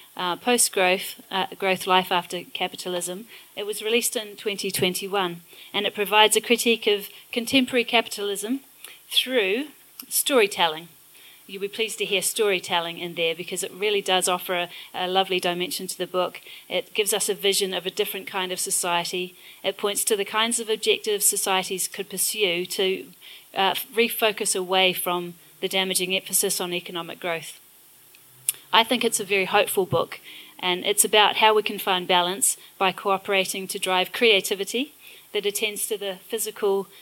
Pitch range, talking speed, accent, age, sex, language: 180-220 Hz, 160 wpm, Australian, 30-49, female, English